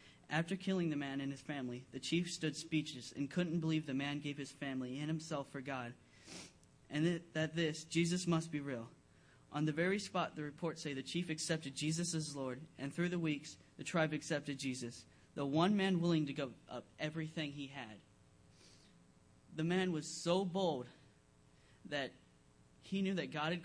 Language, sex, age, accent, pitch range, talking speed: English, male, 20-39, American, 140-180 Hz, 185 wpm